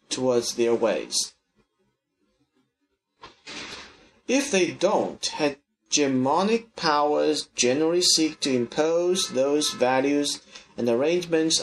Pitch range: 140-180 Hz